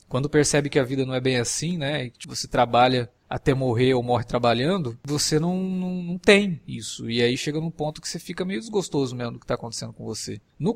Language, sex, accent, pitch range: Portuguese, male, Brazilian, 125-160 Hz